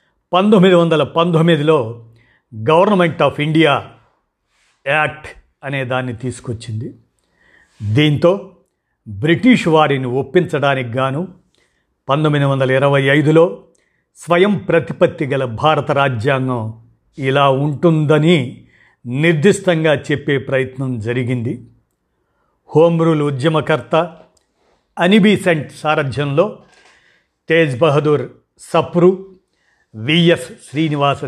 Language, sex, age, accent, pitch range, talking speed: Telugu, male, 50-69, native, 130-165 Hz, 75 wpm